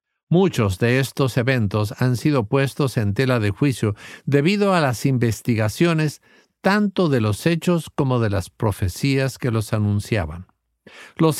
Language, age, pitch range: English, 50-69, 105-145 Hz